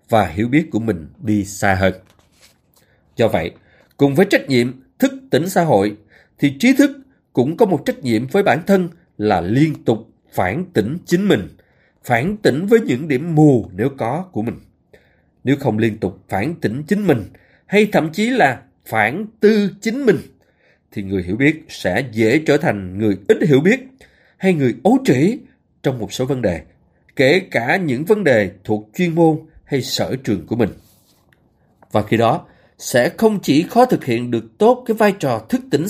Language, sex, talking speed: Vietnamese, male, 185 wpm